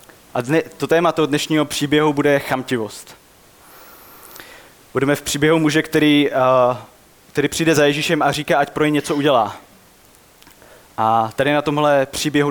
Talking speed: 140 wpm